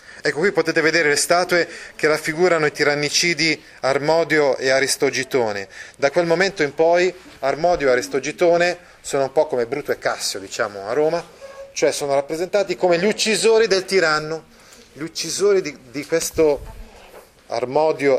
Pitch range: 130-170 Hz